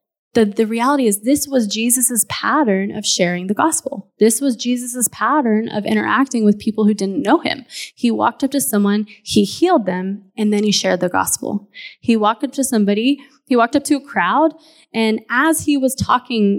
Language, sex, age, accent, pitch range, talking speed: English, female, 20-39, American, 205-255 Hz, 195 wpm